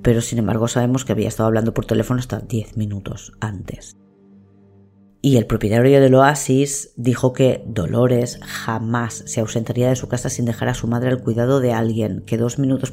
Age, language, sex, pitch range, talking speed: 20-39, Spanish, female, 115-135 Hz, 185 wpm